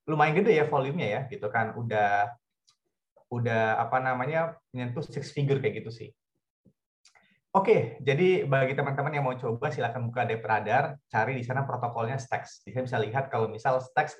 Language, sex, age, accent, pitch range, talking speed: Indonesian, male, 20-39, native, 115-145 Hz, 160 wpm